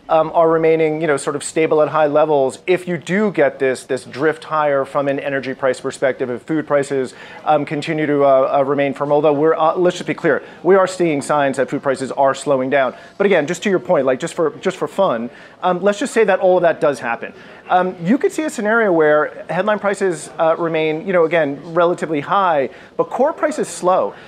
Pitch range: 155-215 Hz